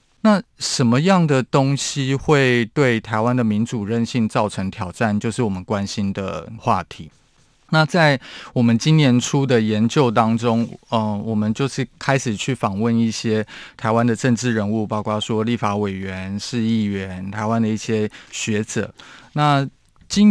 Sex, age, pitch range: male, 20-39, 105-125 Hz